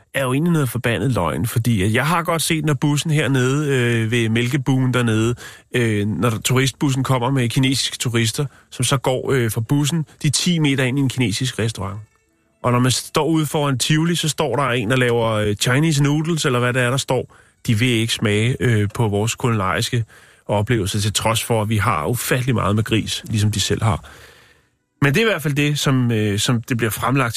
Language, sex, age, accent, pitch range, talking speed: Danish, male, 30-49, native, 110-140 Hz, 215 wpm